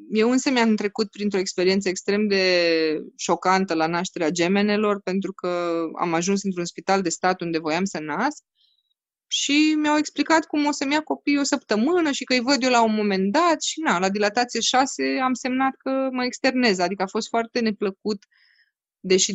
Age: 20-39